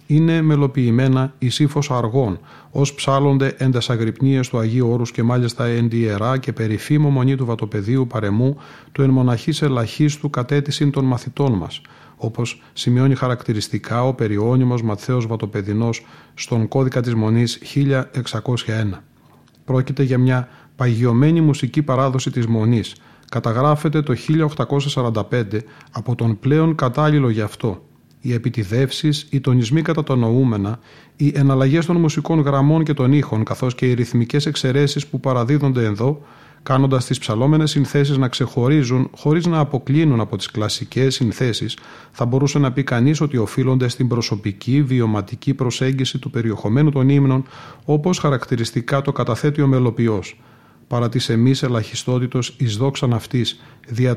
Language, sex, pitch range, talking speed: Greek, male, 120-140 Hz, 135 wpm